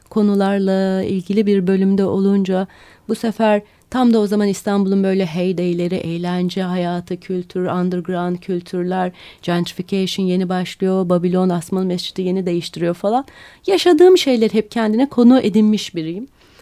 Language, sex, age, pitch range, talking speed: Turkish, female, 30-49, 180-230 Hz, 125 wpm